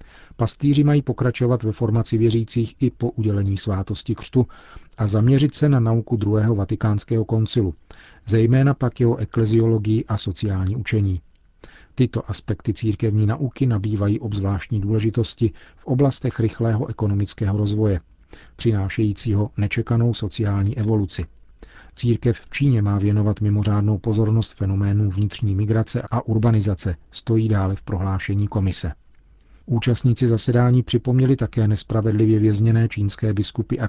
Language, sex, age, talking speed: Czech, male, 40-59, 120 wpm